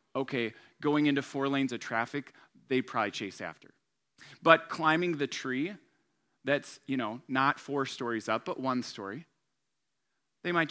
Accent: American